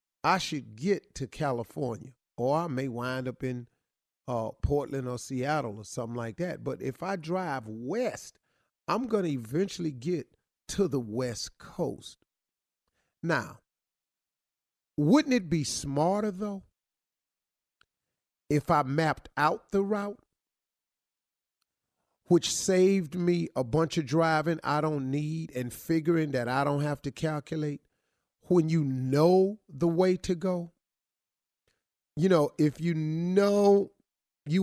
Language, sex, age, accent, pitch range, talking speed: English, male, 40-59, American, 125-170 Hz, 130 wpm